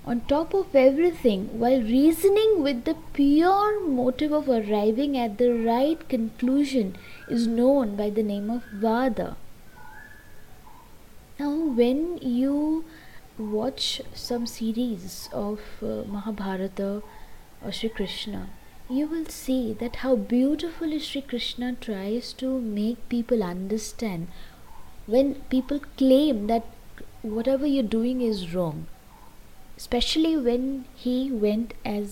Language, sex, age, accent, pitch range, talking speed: English, female, 20-39, Indian, 210-265 Hz, 120 wpm